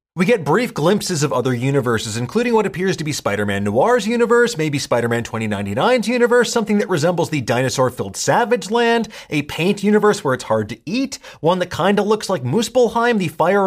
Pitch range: 135-210 Hz